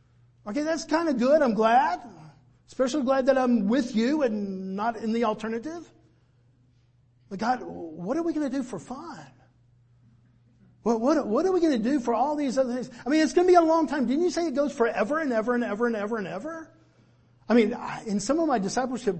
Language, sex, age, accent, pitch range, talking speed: English, male, 50-69, American, 170-250 Hz, 220 wpm